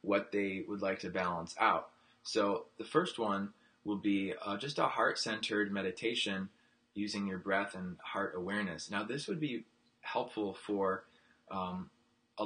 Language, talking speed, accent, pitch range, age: English, 155 wpm, American, 95-110 Hz, 20-39